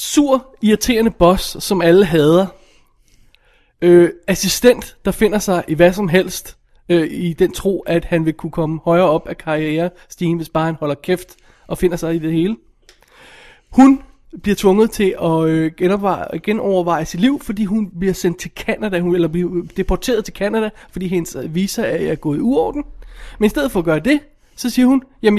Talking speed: 190 wpm